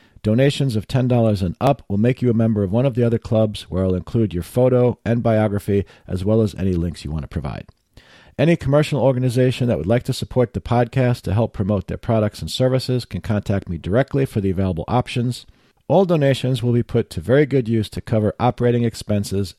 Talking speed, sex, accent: 215 wpm, male, American